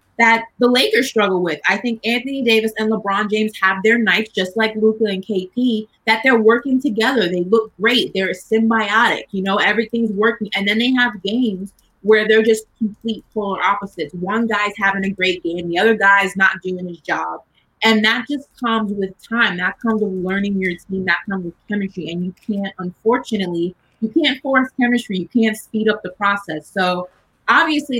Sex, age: female, 20-39